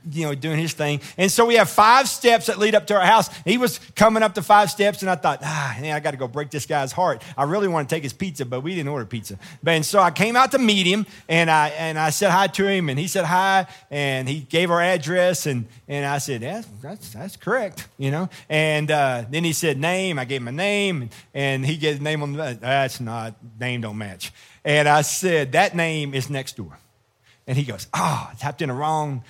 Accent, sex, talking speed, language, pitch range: American, male, 255 wpm, English, 140-195 Hz